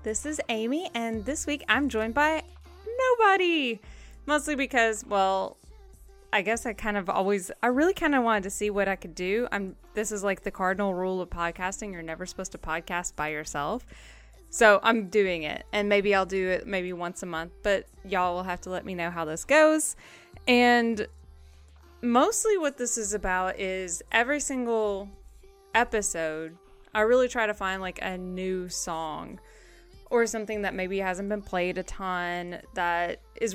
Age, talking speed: 20-39, 180 wpm